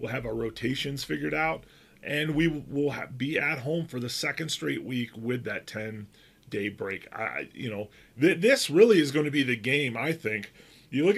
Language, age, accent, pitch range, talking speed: English, 30-49, American, 115-145 Hz, 205 wpm